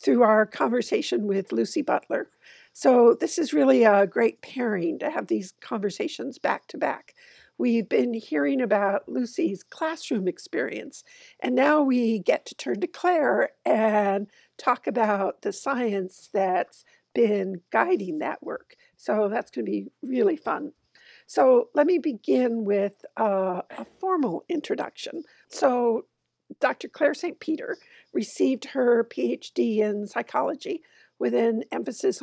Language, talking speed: English, 135 wpm